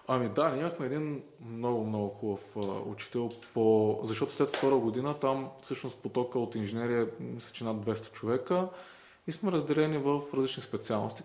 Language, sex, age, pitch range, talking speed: Bulgarian, male, 20-39, 110-135 Hz, 160 wpm